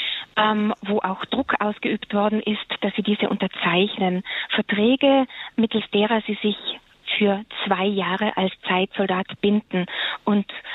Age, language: 20-39, German